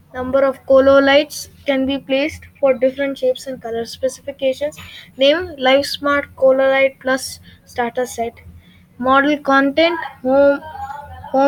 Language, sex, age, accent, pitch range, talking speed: English, female, 20-39, Indian, 255-290 Hz, 120 wpm